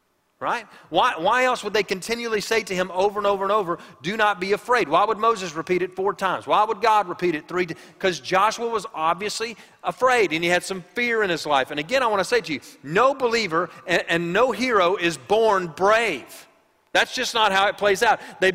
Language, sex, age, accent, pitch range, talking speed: English, male, 40-59, American, 175-230 Hz, 230 wpm